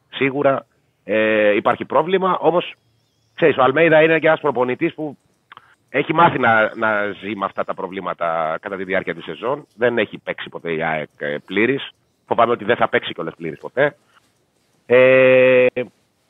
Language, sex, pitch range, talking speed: Greek, male, 100-135 Hz, 160 wpm